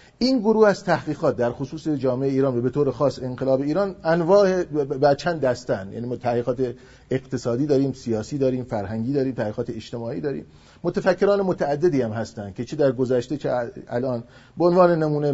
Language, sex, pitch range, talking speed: Persian, male, 125-160 Hz, 160 wpm